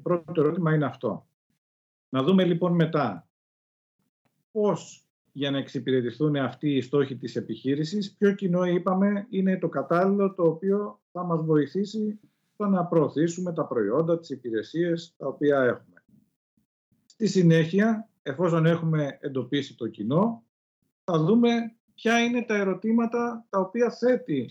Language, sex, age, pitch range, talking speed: Greek, male, 50-69, 125-180 Hz, 135 wpm